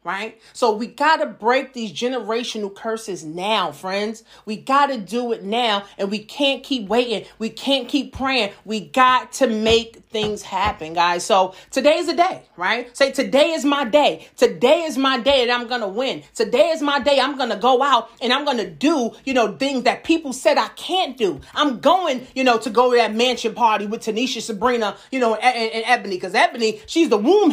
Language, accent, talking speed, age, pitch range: English, American, 200 wpm, 30-49, 215-275 Hz